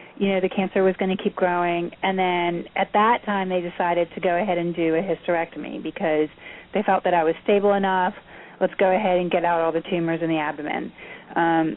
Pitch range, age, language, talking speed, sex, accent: 165-190 Hz, 30-49, English, 225 wpm, female, American